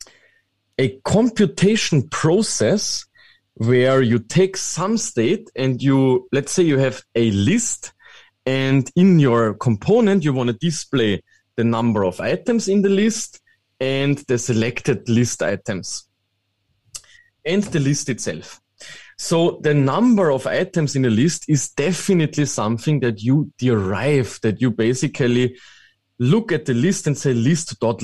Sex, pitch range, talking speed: male, 115-160 Hz, 140 wpm